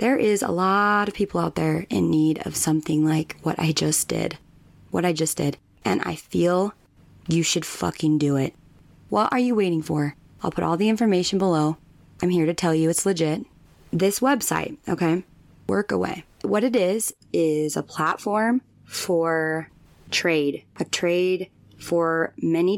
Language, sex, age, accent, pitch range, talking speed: English, female, 20-39, American, 155-180 Hz, 170 wpm